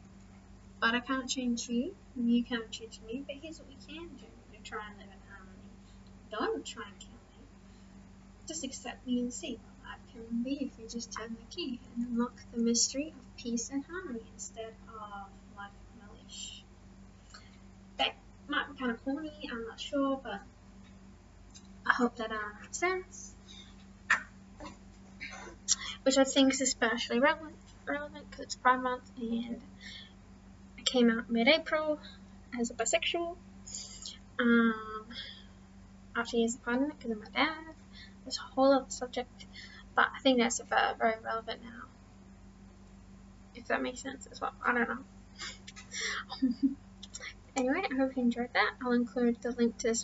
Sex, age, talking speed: female, 10-29, 155 wpm